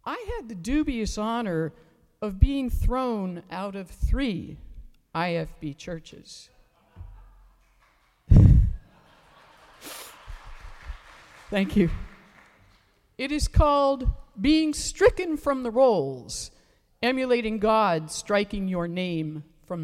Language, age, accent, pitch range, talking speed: English, 50-69, American, 160-255 Hz, 90 wpm